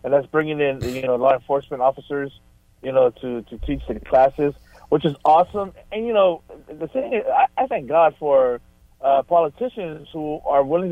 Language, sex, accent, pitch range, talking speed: English, male, American, 130-165 Hz, 190 wpm